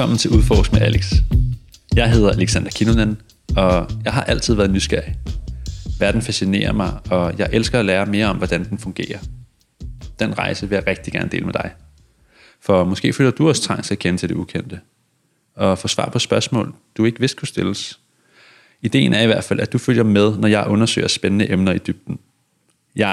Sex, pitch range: male, 100-115 Hz